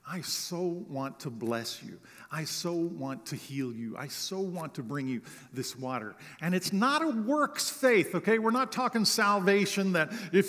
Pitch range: 130-180 Hz